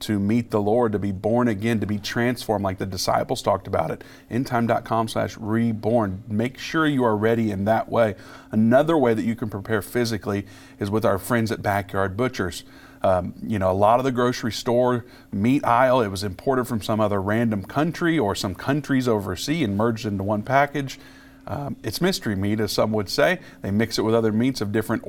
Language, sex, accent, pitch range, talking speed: English, male, American, 100-125 Hz, 205 wpm